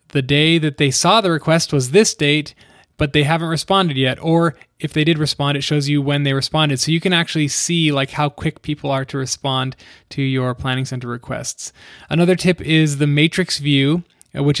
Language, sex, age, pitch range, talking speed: English, male, 20-39, 135-155 Hz, 205 wpm